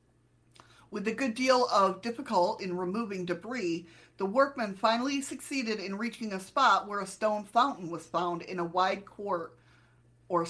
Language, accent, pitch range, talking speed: English, American, 170-225 Hz, 160 wpm